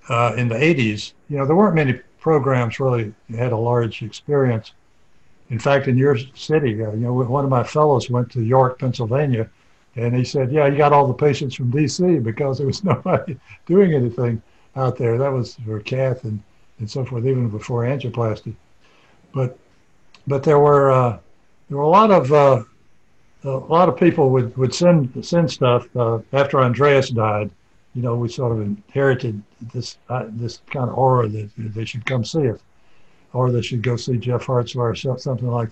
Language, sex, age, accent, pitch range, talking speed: English, male, 60-79, American, 120-145 Hz, 195 wpm